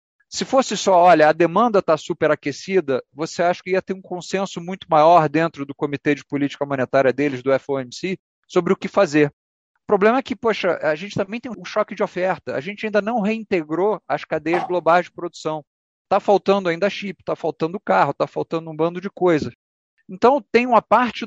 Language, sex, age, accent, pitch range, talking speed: Portuguese, male, 40-59, Brazilian, 145-190 Hz, 195 wpm